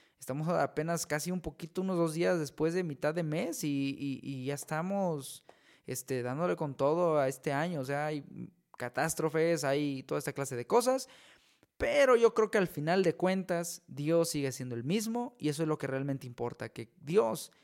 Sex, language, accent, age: male, Spanish, Mexican, 20-39